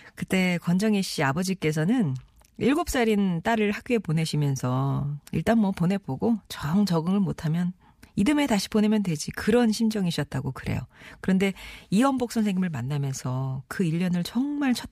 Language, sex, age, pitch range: Korean, female, 40-59, 150-210 Hz